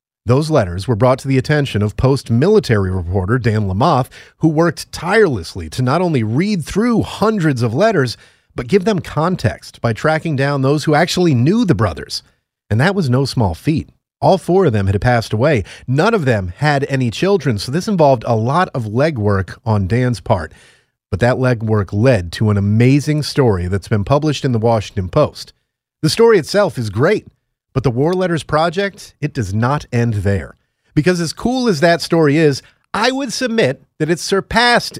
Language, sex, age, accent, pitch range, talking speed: English, male, 40-59, American, 115-170 Hz, 185 wpm